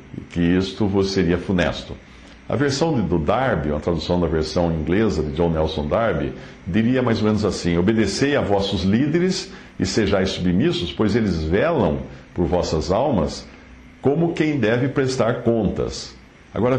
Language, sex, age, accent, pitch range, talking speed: English, male, 60-79, Brazilian, 85-125 Hz, 145 wpm